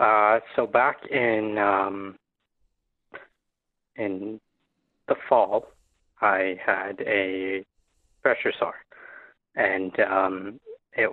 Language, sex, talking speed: English, male, 85 wpm